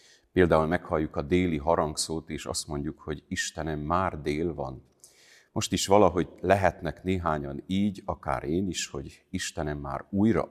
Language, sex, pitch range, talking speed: Hungarian, male, 75-95 Hz, 150 wpm